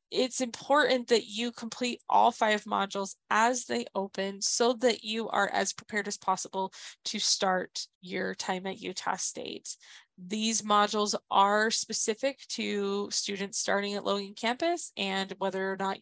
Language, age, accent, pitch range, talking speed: English, 20-39, American, 200-240 Hz, 150 wpm